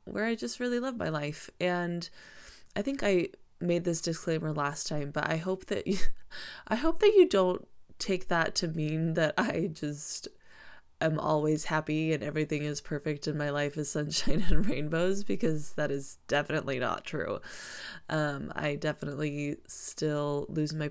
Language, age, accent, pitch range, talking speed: English, 20-39, American, 150-180 Hz, 170 wpm